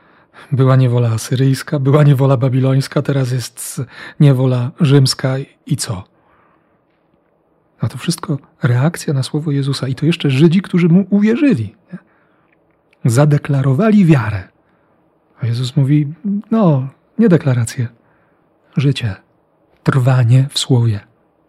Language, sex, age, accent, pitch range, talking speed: Polish, male, 40-59, native, 120-155 Hz, 105 wpm